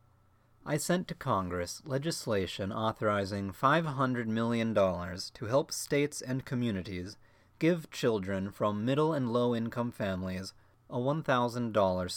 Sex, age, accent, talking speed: male, 30-49, American, 110 wpm